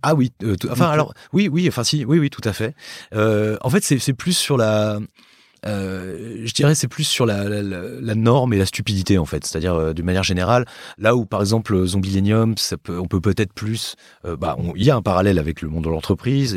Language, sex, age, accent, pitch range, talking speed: French, male, 30-49, French, 85-115 Hz, 230 wpm